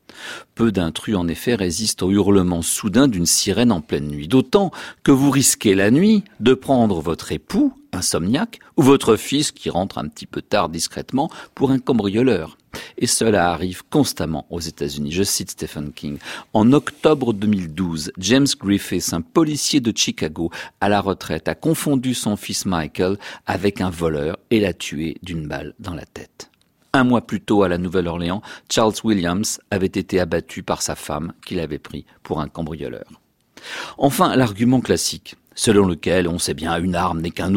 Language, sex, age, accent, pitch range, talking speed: French, male, 50-69, French, 85-120 Hz, 175 wpm